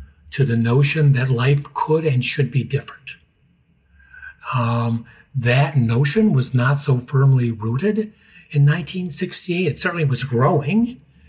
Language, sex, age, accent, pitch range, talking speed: English, male, 60-79, American, 125-150 Hz, 130 wpm